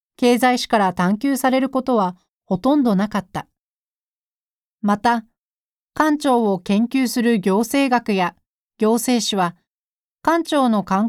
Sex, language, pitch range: female, Japanese, 200-265 Hz